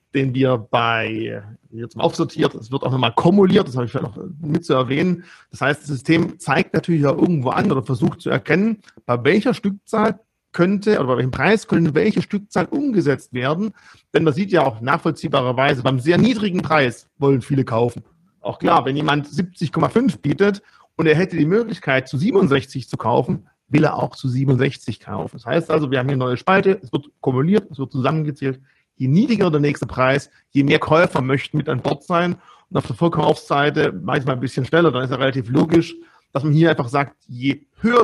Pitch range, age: 135-170 Hz, 40-59